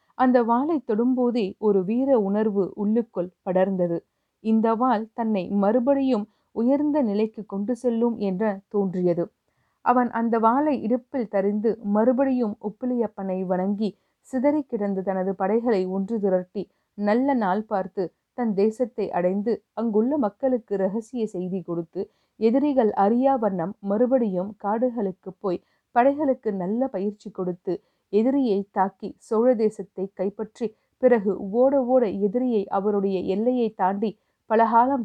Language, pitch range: Tamil, 195-245 Hz